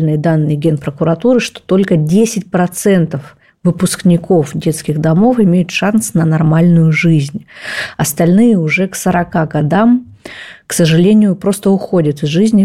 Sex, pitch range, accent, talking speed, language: female, 165-210 Hz, native, 120 wpm, Russian